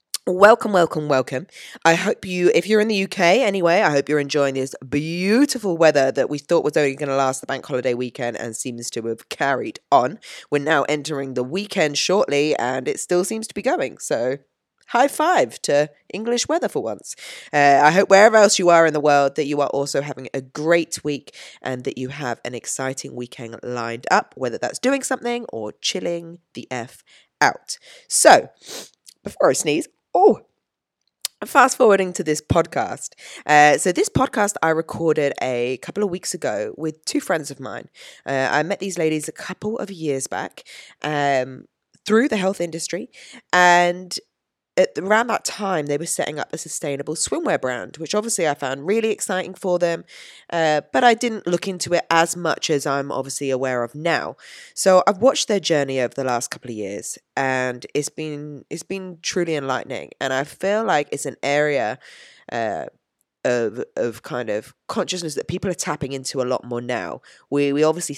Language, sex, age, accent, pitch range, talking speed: English, female, 20-39, British, 135-190 Hz, 190 wpm